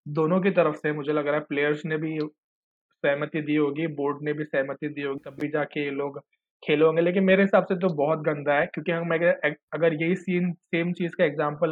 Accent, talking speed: native, 225 wpm